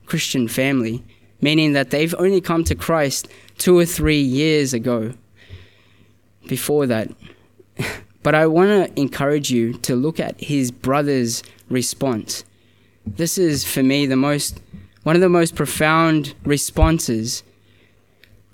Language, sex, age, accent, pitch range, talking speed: English, male, 20-39, Australian, 115-155 Hz, 130 wpm